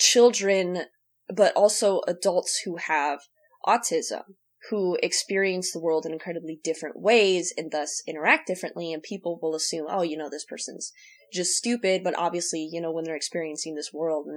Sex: female